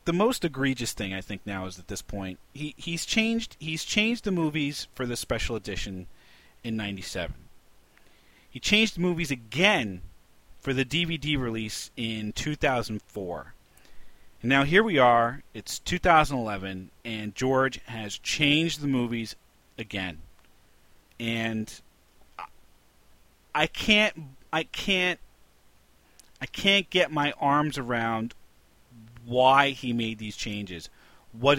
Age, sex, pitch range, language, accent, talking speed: 40-59, male, 100-140 Hz, English, American, 125 wpm